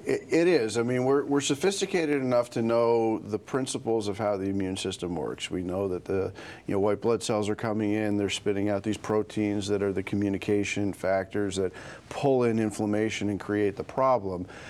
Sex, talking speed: male, 195 wpm